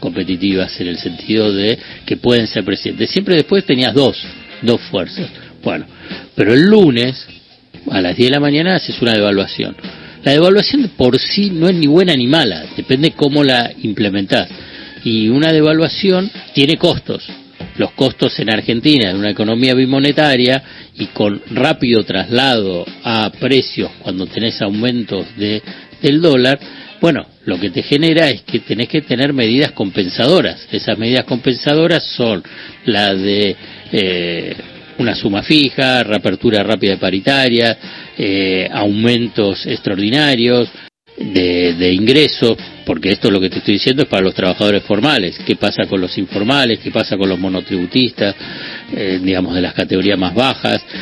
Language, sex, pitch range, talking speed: Spanish, male, 100-140 Hz, 150 wpm